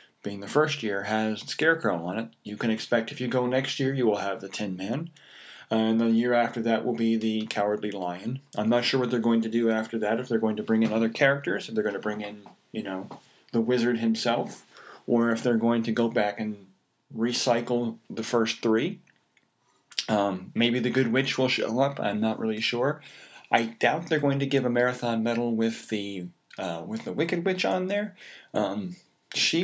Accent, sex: American, male